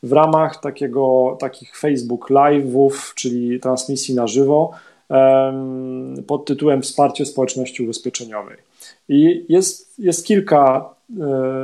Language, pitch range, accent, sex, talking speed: Polish, 125-145 Hz, native, male, 95 wpm